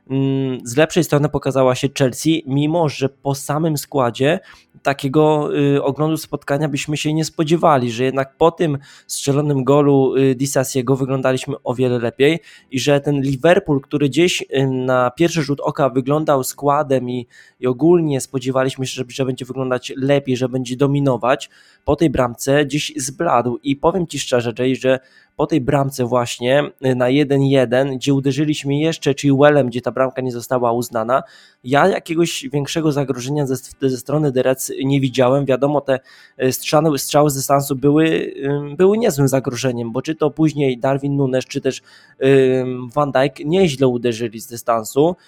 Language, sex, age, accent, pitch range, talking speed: Polish, male, 20-39, native, 130-145 Hz, 150 wpm